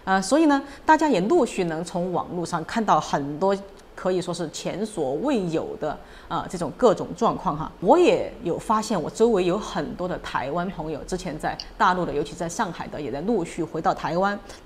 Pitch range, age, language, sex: 165-220 Hz, 30-49, Chinese, female